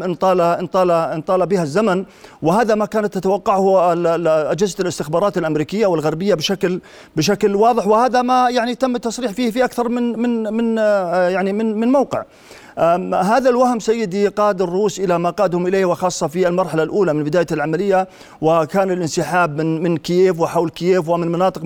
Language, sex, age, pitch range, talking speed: Arabic, male, 40-59, 180-225 Hz, 165 wpm